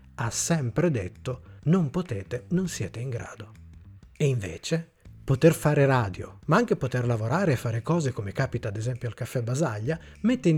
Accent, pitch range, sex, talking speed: native, 105-160 Hz, male, 170 wpm